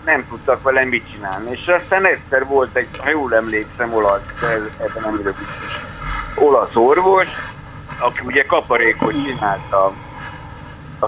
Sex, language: male, Hungarian